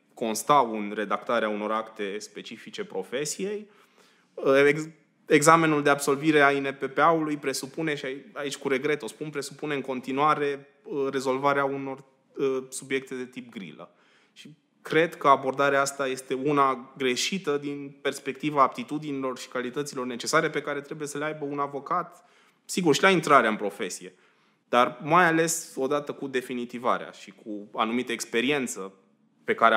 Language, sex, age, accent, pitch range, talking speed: Romanian, male, 20-39, native, 130-155 Hz, 140 wpm